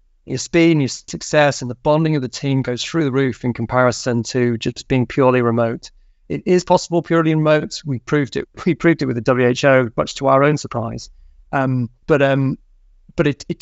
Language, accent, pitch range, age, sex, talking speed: English, British, 125-145 Hz, 30-49, male, 205 wpm